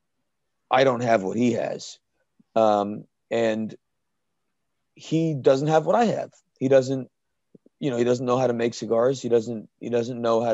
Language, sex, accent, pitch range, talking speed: English, male, American, 115-130 Hz, 175 wpm